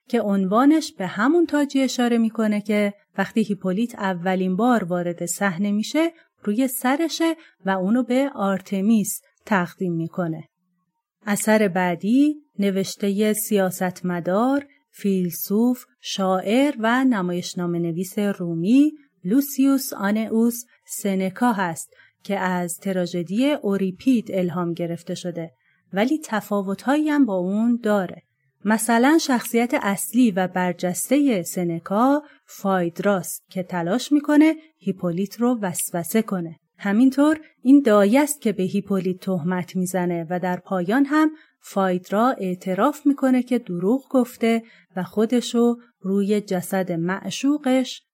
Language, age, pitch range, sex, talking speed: Persian, 30-49, 185-250 Hz, female, 110 wpm